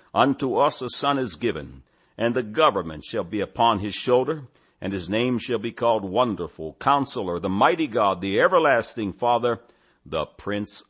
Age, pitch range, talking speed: 60-79, 90-120 Hz, 165 wpm